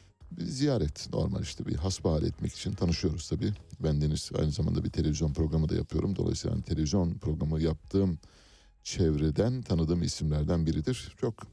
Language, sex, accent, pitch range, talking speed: Turkish, male, native, 80-105 Hz, 150 wpm